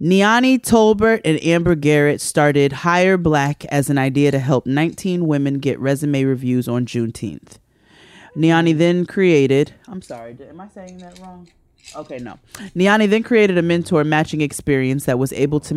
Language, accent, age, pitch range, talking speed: English, American, 30-49, 135-170 Hz, 165 wpm